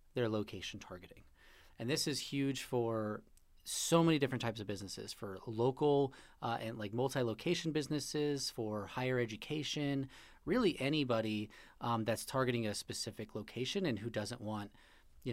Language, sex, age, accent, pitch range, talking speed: English, male, 30-49, American, 110-135 Hz, 150 wpm